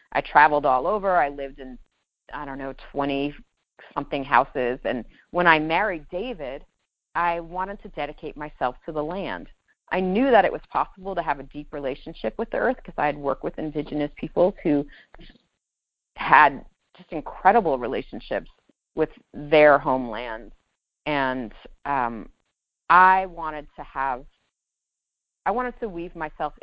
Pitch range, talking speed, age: 145-185 Hz, 145 wpm, 30-49